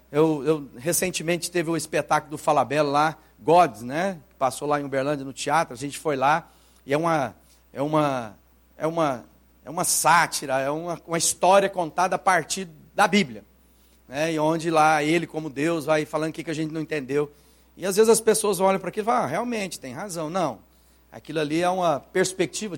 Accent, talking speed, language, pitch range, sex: Brazilian, 185 wpm, Portuguese, 145-200 Hz, male